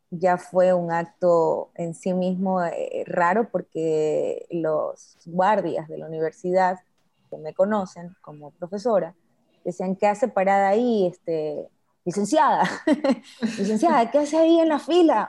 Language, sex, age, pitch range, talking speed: Spanish, female, 20-39, 180-225 Hz, 135 wpm